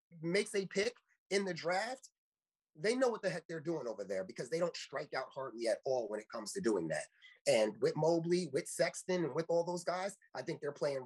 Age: 30-49